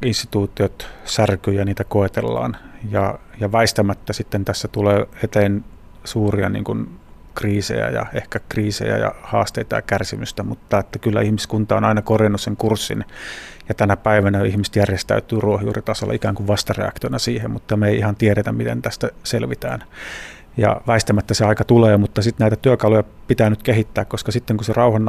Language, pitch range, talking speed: Finnish, 105-110 Hz, 160 wpm